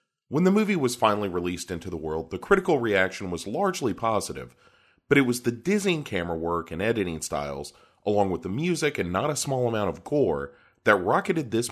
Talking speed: 200 wpm